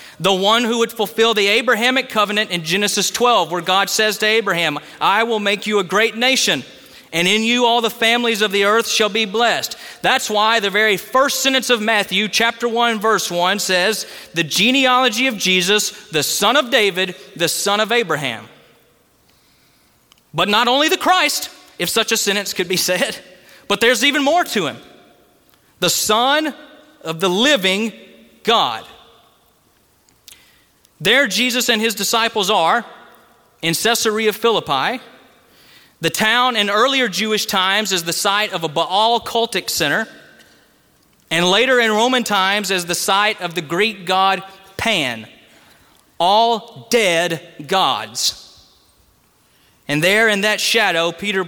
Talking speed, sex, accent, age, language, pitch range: 150 wpm, male, American, 30-49, English, 185-235 Hz